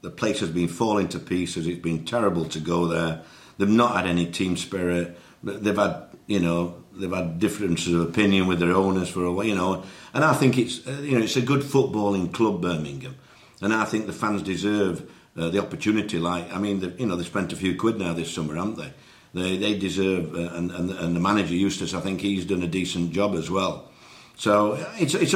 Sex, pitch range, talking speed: male, 85-110 Hz, 225 wpm